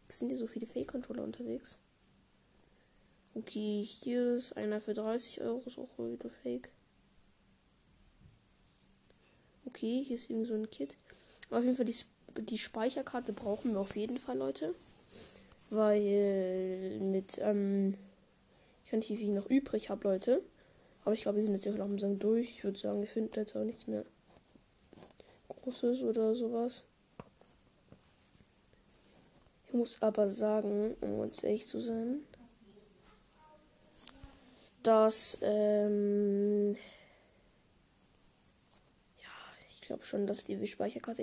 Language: German